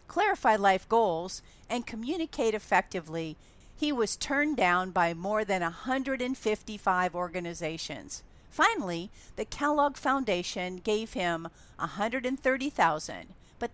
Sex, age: female, 50-69